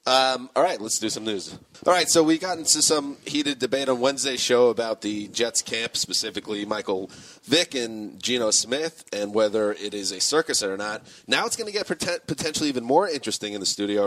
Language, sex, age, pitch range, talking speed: English, male, 30-49, 105-130 Hz, 210 wpm